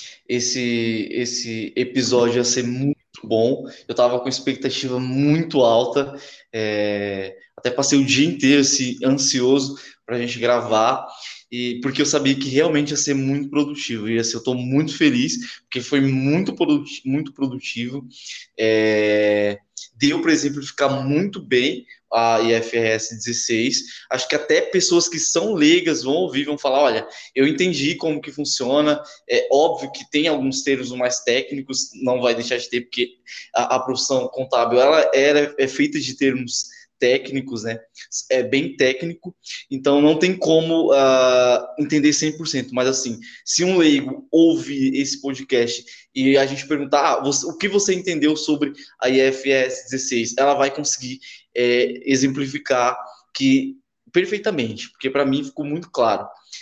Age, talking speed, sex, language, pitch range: 20-39, 155 wpm, male, Portuguese, 125-150 Hz